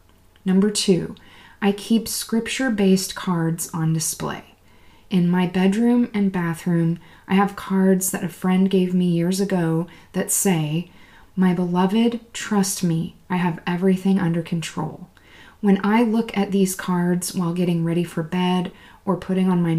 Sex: female